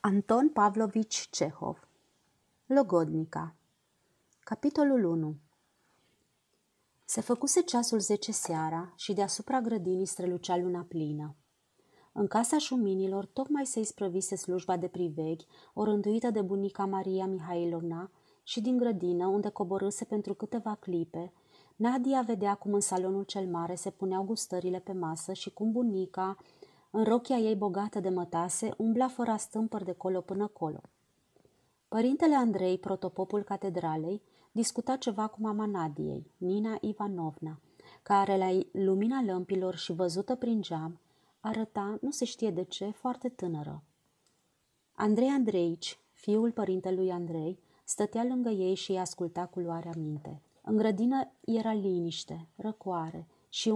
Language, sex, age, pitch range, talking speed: Romanian, female, 30-49, 180-220 Hz, 125 wpm